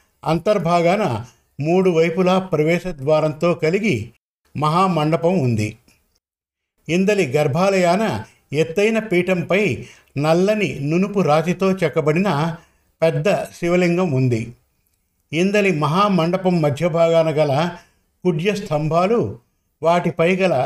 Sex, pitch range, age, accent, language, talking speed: male, 150-180 Hz, 50-69, native, Telugu, 80 wpm